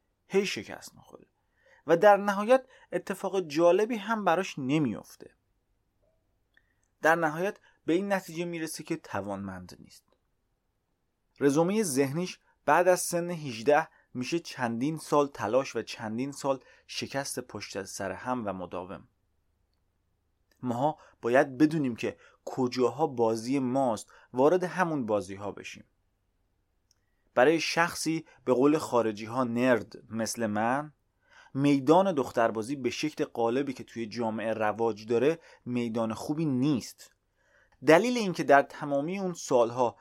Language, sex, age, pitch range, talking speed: Persian, male, 30-49, 115-165 Hz, 120 wpm